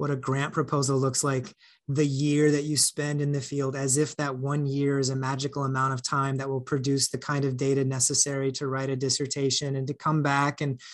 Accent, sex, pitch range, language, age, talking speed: American, male, 145-185 Hz, English, 30-49, 230 wpm